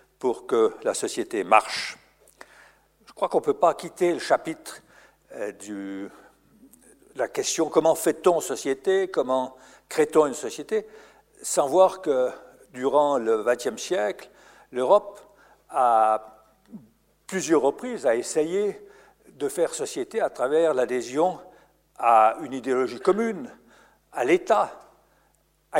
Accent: French